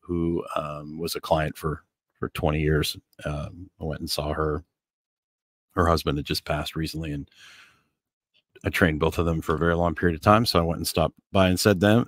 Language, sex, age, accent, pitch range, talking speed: English, male, 40-59, American, 80-95 Hz, 215 wpm